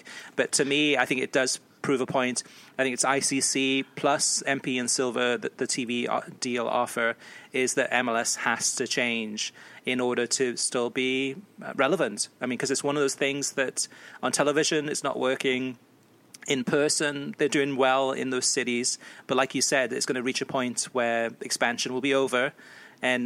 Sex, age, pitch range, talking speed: male, 30-49, 120-135 Hz, 190 wpm